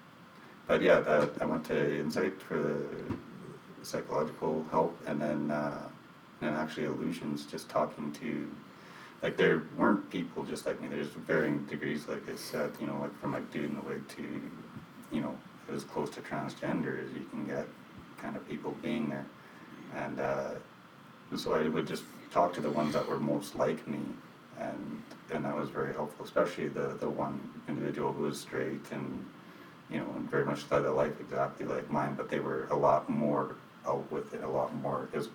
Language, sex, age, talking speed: English, male, 30-49, 190 wpm